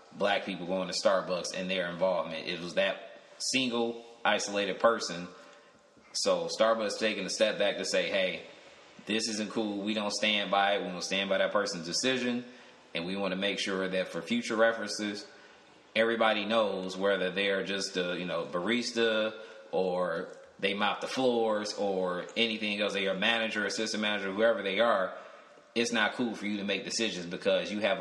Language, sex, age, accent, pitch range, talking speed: English, male, 20-39, American, 95-115 Hz, 180 wpm